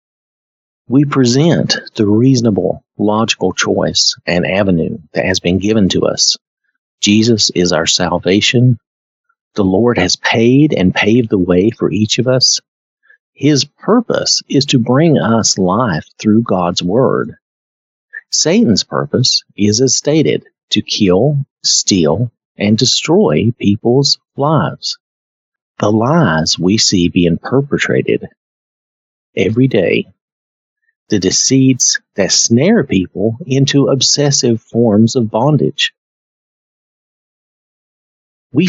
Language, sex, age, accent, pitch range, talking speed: English, male, 40-59, American, 100-140 Hz, 110 wpm